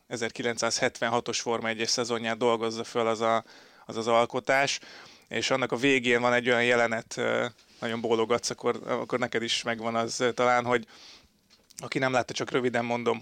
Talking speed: 155 wpm